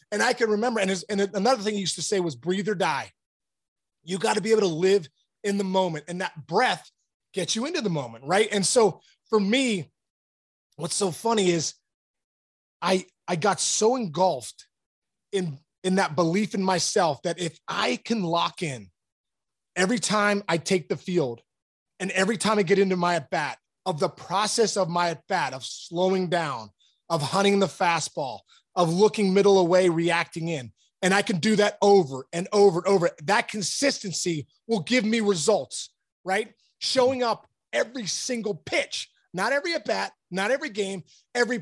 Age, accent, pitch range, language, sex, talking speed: 20-39, American, 175-220 Hz, English, male, 175 wpm